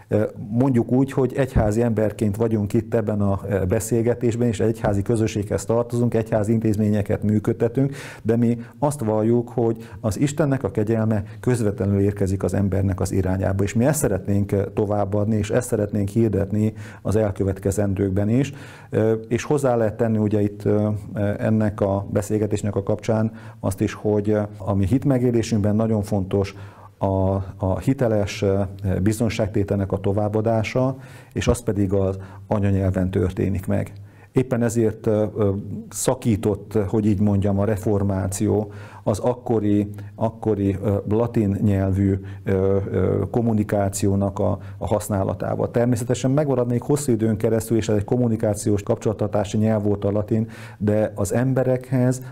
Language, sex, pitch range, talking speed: Hungarian, male, 100-115 Hz, 125 wpm